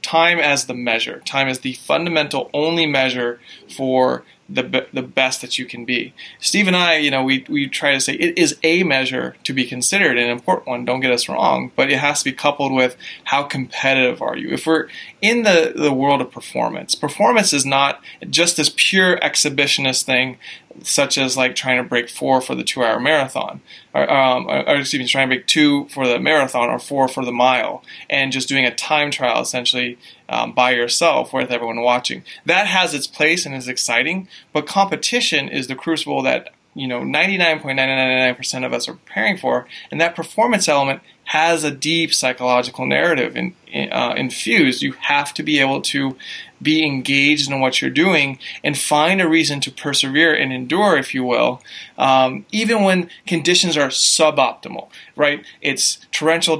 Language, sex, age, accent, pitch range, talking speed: English, male, 20-39, American, 130-155 Hz, 185 wpm